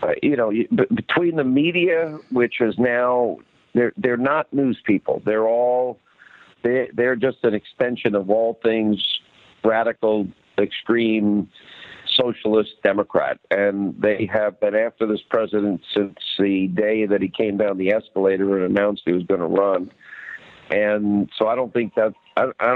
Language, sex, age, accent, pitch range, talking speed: English, male, 50-69, American, 105-125 Hz, 140 wpm